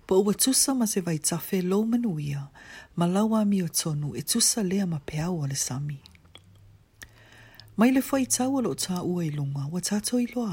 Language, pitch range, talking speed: English, 145-210 Hz, 150 wpm